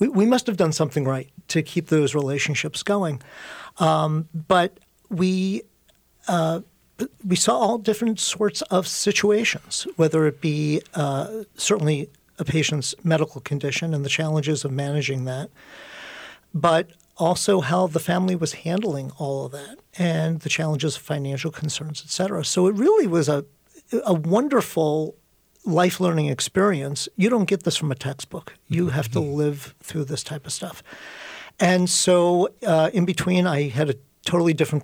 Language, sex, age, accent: English, male, 50-69, American